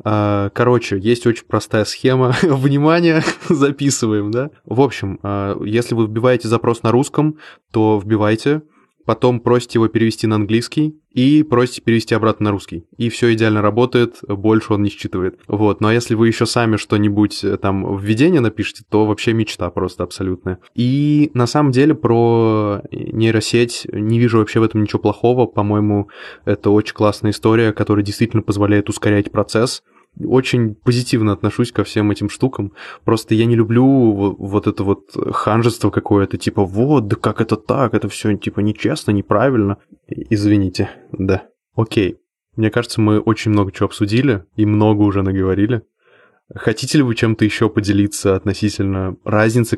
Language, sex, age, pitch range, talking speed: Russian, male, 20-39, 105-120 Hz, 150 wpm